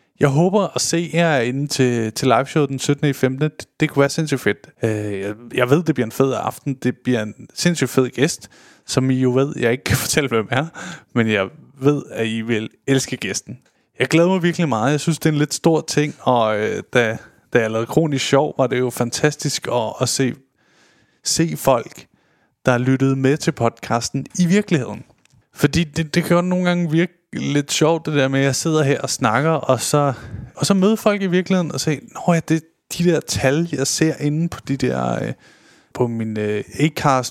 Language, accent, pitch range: Danish, native, 120-155 Hz